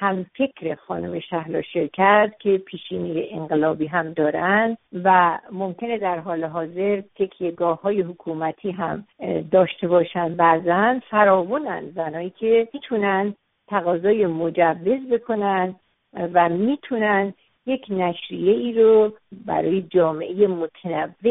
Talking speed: 105 wpm